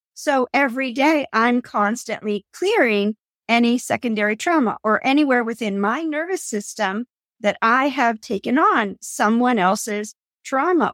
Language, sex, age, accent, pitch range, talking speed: English, female, 50-69, American, 215-265 Hz, 125 wpm